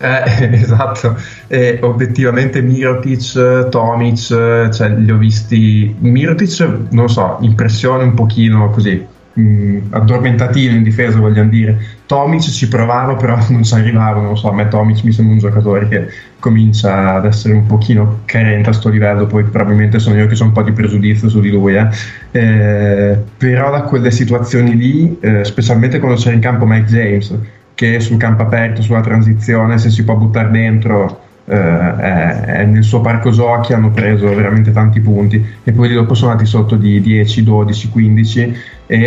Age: 20-39